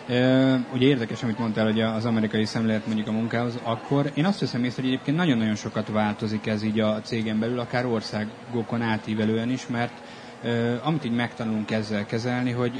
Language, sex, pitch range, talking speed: Hungarian, male, 110-125 Hz, 185 wpm